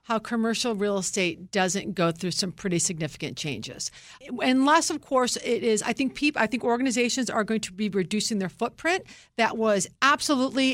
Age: 50-69